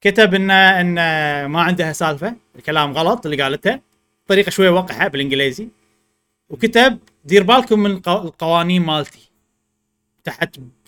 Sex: male